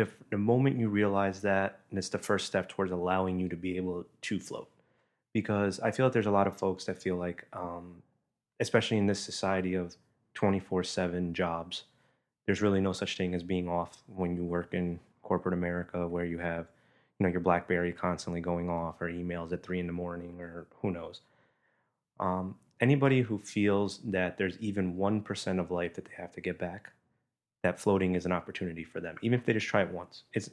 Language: English